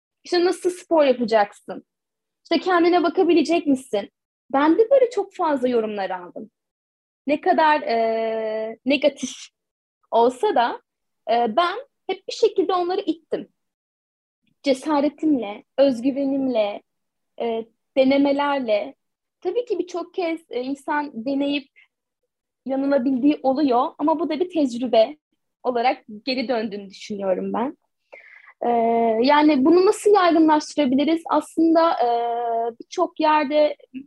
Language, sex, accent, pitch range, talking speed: Turkish, female, native, 240-320 Hz, 105 wpm